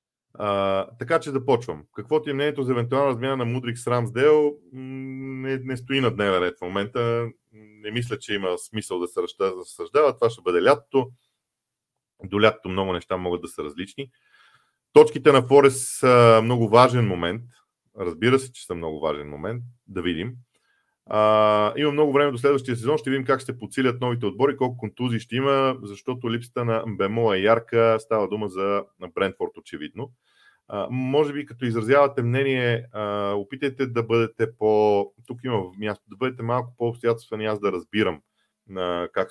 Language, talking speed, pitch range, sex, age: Bulgarian, 175 wpm, 105-135 Hz, male, 40-59